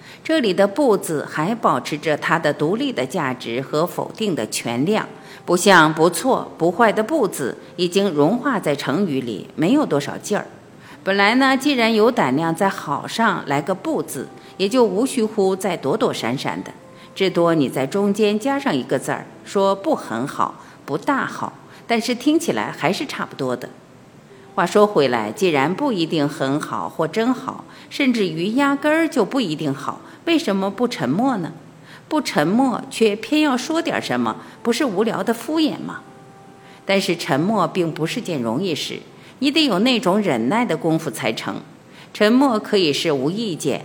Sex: female